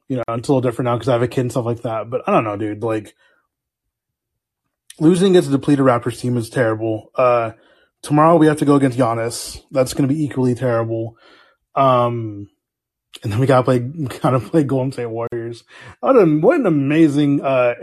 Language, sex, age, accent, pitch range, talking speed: English, male, 20-39, American, 120-165 Hz, 205 wpm